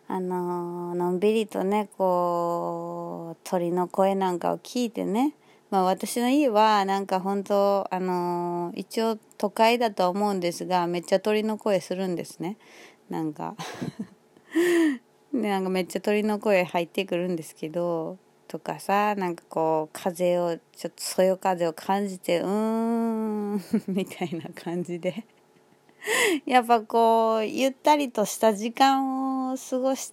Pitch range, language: 175-225 Hz, Japanese